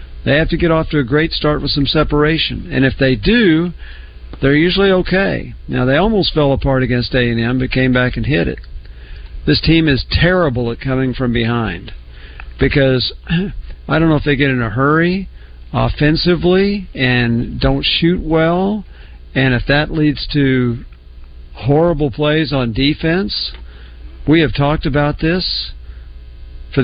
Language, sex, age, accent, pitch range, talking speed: English, male, 50-69, American, 110-150 Hz, 155 wpm